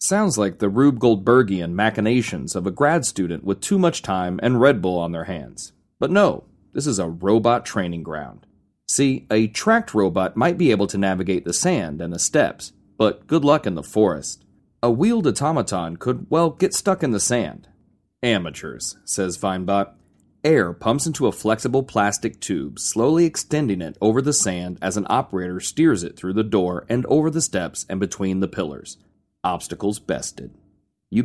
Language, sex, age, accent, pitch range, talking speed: English, male, 30-49, American, 95-145 Hz, 180 wpm